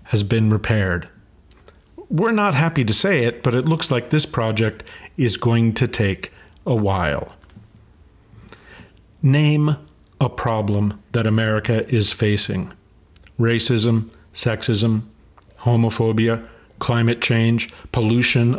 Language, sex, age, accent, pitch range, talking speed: English, male, 50-69, American, 105-130 Hz, 110 wpm